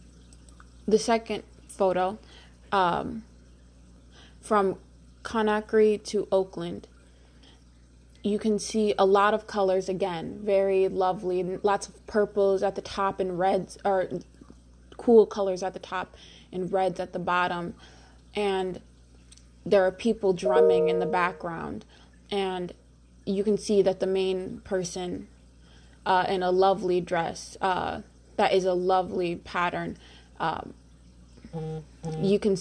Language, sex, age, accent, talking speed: English, female, 20-39, American, 125 wpm